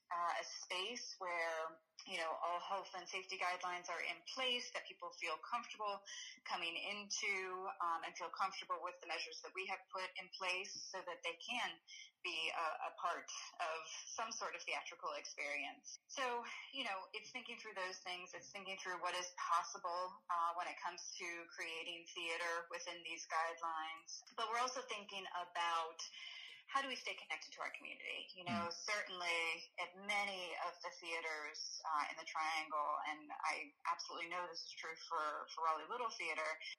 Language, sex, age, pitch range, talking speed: English, female, 30-49, 170-205 Hz, 175 wpm